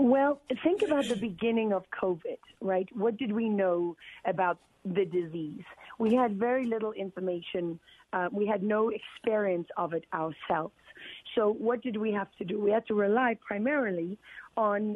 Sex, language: female, English